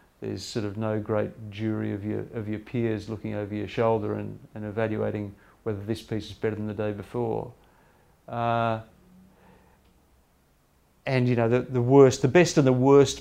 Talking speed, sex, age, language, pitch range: 175 wpm, male, 50-69, English, 105-130 Hz